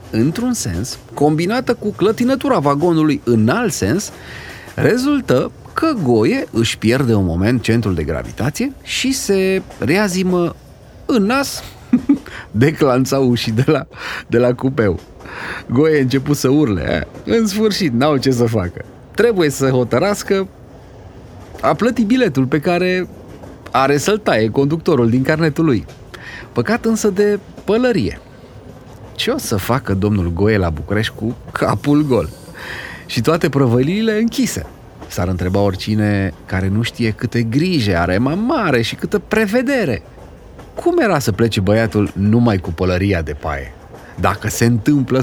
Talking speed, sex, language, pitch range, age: 135 wpm, male, Romanian, 110-180 Hz, 30-49